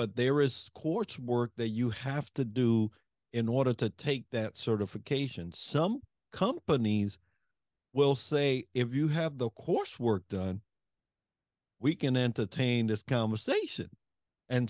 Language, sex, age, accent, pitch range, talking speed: English, male, 50-69, American, 110-135 Hz, 125 wpm